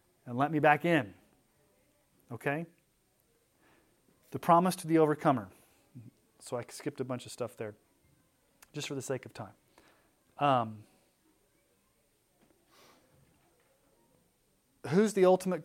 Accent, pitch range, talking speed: American, 135-180 Hz, 110 wpm